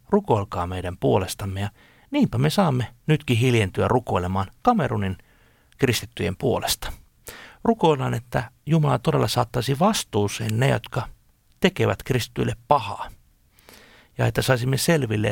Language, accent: Finnish, native